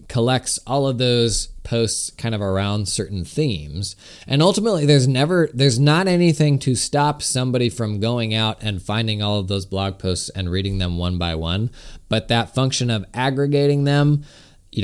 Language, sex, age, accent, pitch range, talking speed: English, male, 20-39, American, 100-130 Hz, 175 wpm